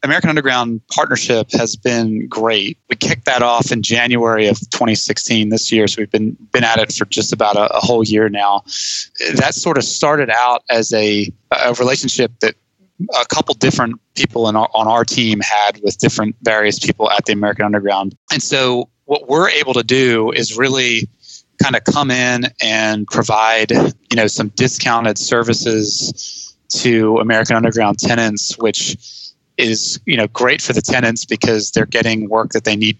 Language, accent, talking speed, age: English, American, 175 wpm, 20-39